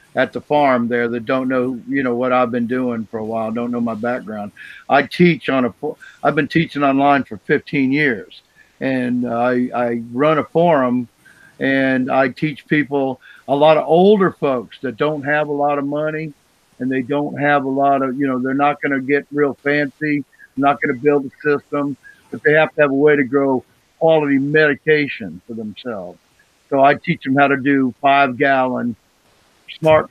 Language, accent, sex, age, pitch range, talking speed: English, American, male, 50-69, 125-155 Hz, 195 wpm